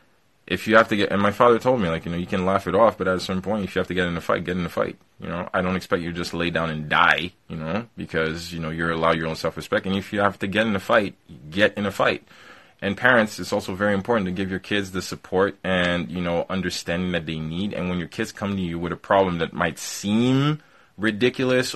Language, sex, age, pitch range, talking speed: English, male, 20-39, 85-105 Hz, 285 wpm